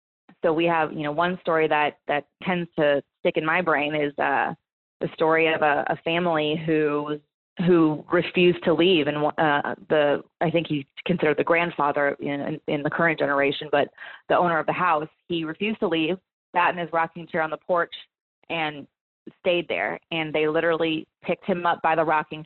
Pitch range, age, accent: 155-175 Hz, 20-39, American